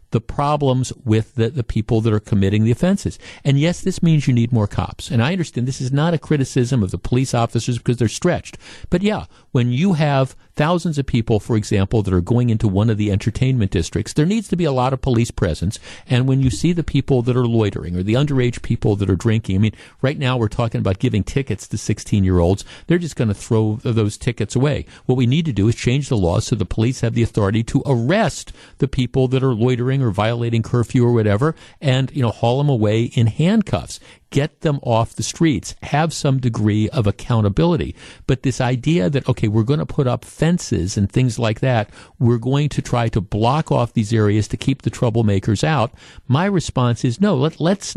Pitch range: 110-145 Hz